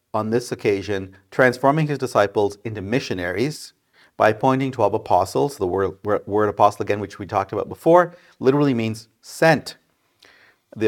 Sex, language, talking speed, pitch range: male, English, 145 wpm, 100-130 Hz